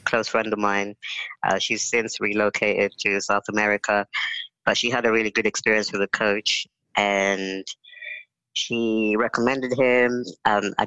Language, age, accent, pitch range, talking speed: English, 20-39, British, 100-110 Hz, 150 wpm